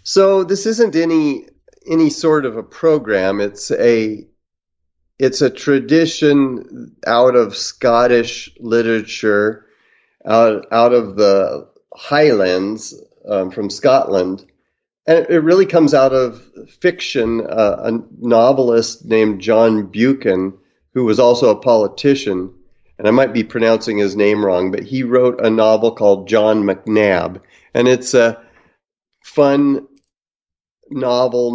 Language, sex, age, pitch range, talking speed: English, male, 40-59, 105-130 Hz, 125 wpm